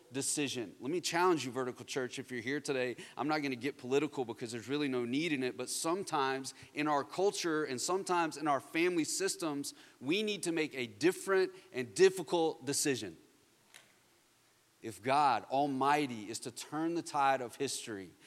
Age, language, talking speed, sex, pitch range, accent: 30-49, English, 175 wpm, male, 120-170 Hz, American